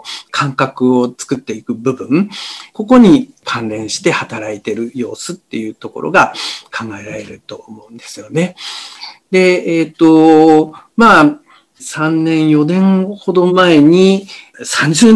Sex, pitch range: male, 125-190 Hz